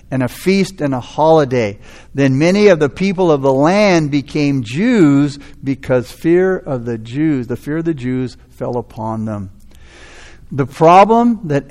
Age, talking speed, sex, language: 60-79, 165 wpm, male, English